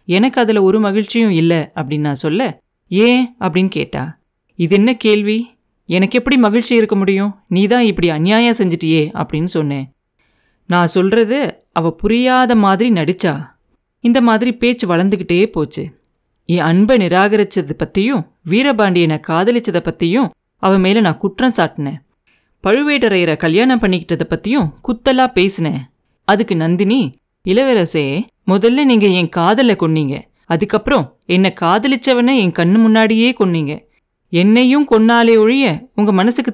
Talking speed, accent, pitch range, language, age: 115 wpm, native, 170-230 Hz, Tamil, 30-49